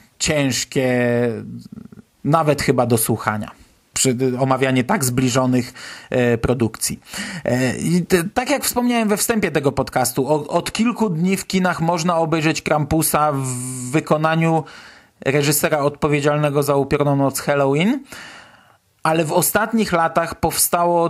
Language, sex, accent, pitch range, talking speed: Polish, male, native, 130-170 Hz, 110 wpm